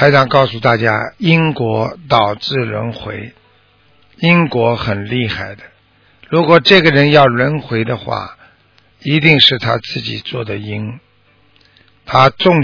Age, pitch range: 60-79, 110-130 Hz